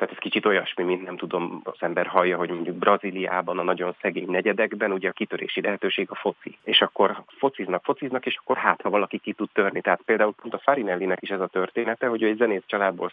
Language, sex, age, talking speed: Hungarian, male, 30-49, 225 wpm